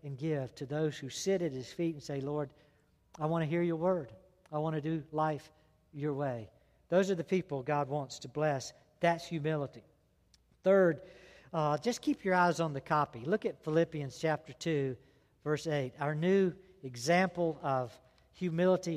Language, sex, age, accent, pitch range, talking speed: English, male, 60-79, American, 145-175 Hz, 175 wpm